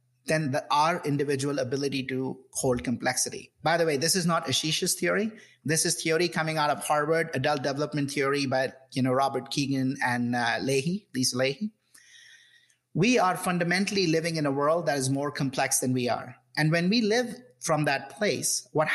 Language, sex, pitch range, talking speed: English, male, 135-175 Hz, 175 wpm